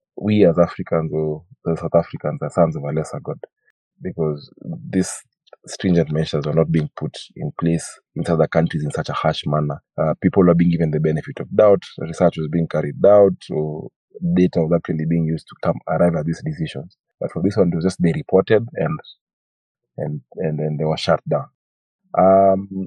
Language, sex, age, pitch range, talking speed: English, male, 30-49, 80-100 Hz, 195 wpm